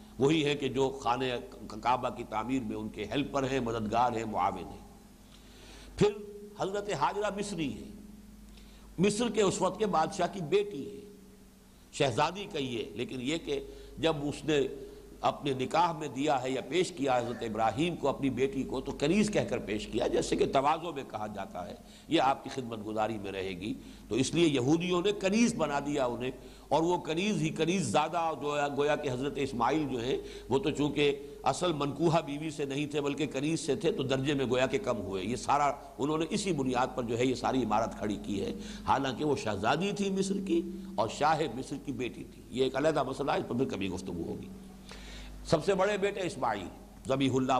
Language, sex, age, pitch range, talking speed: English, male, 60-79, 135-195 Hz, 185 wpm